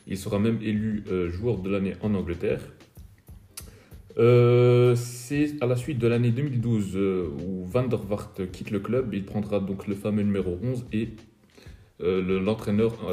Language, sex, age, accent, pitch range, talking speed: French, male, 30-49, French, 90-110 Hz, 165 wpm